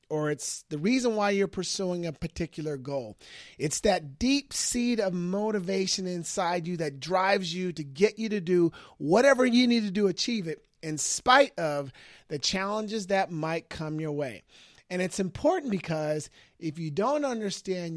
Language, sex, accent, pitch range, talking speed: English, male, American, 155-215 Hz, 170 wpm